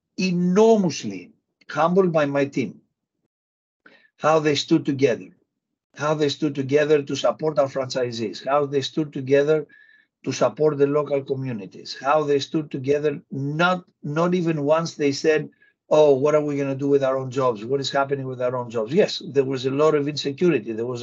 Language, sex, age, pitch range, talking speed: English, male, 60-79, 140-180 Hz, 180 wpm